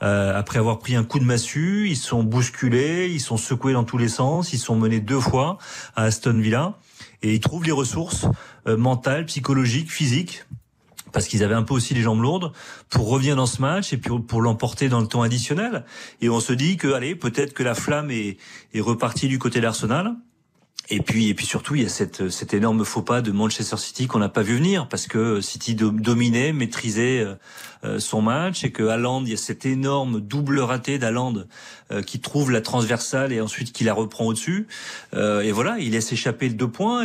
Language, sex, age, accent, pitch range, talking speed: French, male, 40-59, French, 115-145 Hz, 205 wpm